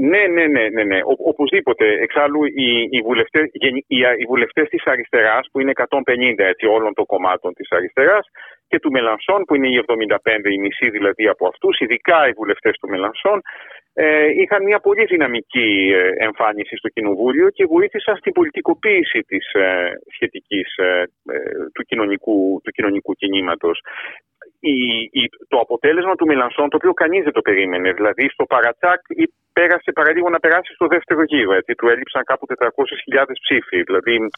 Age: 40-59